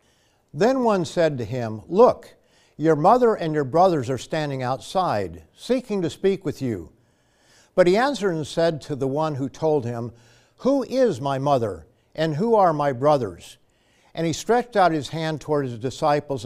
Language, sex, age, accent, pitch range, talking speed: English, male, 60-79, American, 130-180 Hz, 175 wpm